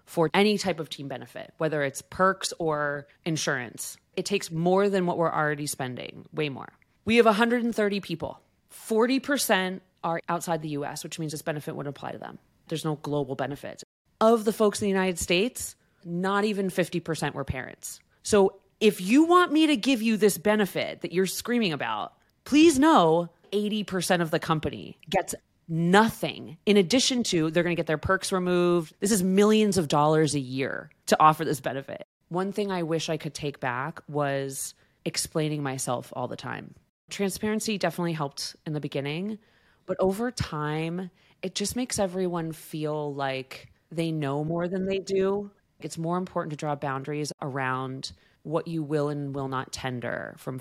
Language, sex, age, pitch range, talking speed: English, female, 30-49, 150-195 Hz, 175 wpm